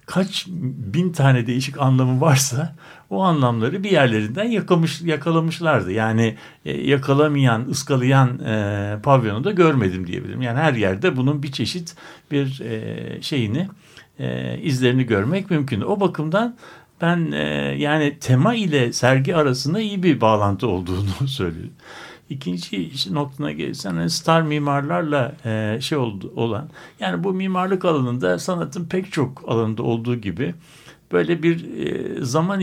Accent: native